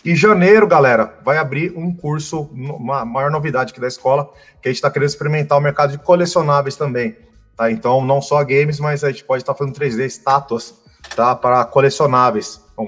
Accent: Brazilian